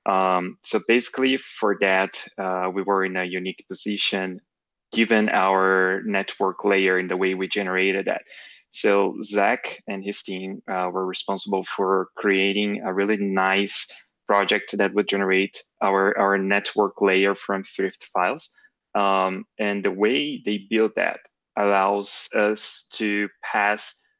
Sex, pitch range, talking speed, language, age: male, 95-105 Hz, 140 wpm, English, 20-39